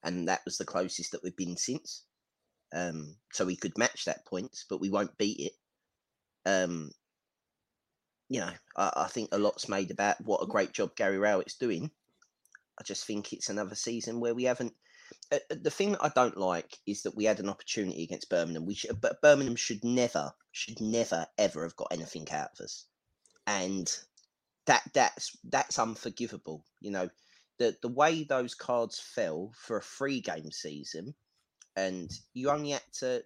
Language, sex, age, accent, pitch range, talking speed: English, male, 30-49, British, 105-135 Hz, 180 wpm